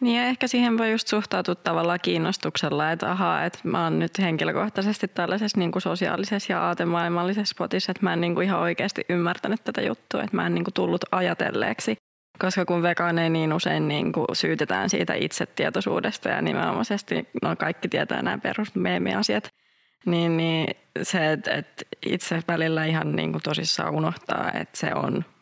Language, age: Finnish, 20-39